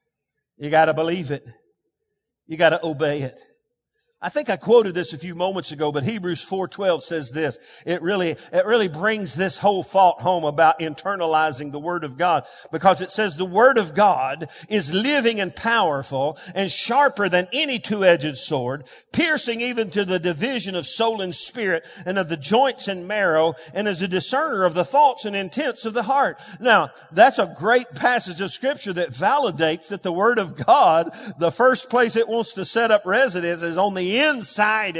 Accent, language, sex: American, English, male